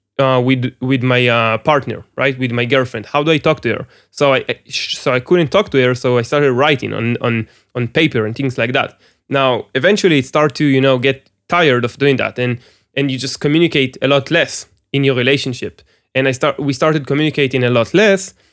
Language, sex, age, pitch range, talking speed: English, male, 20-39, 130-155 Hz, 220 wpm